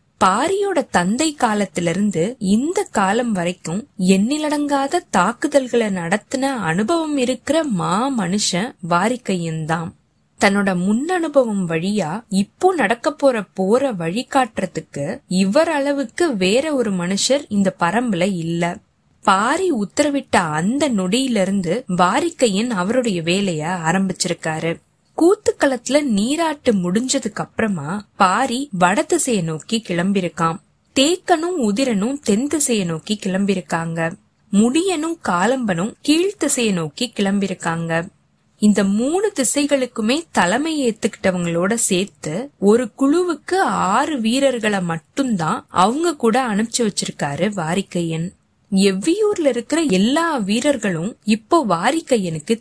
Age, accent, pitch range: 20-39, native, 185-270 Hz